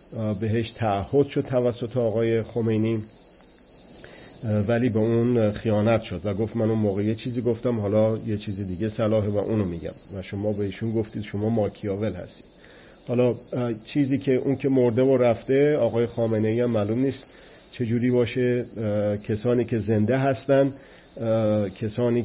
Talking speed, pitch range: 150 wpm, 110-125 Hz